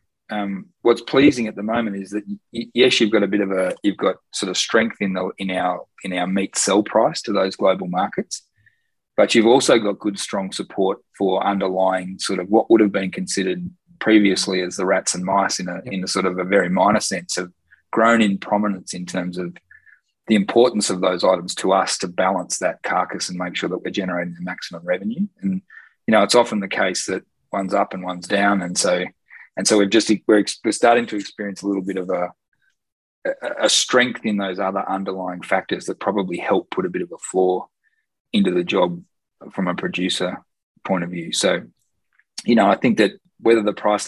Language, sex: English, male